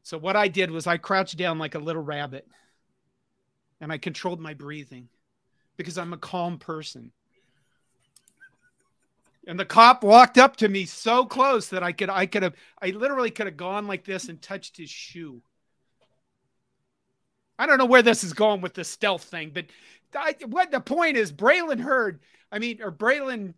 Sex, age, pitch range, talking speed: male, 40-59, 165-230 Hz, 180 wpm